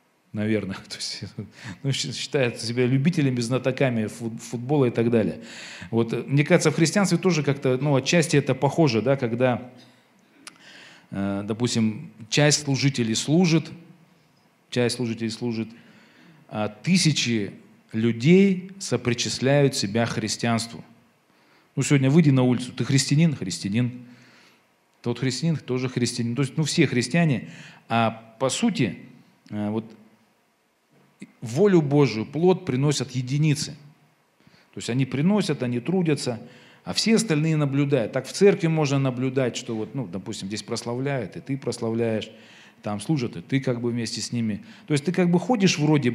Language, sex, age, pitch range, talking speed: Russian, male, 40-59, 115-155 Hz, 135 wpm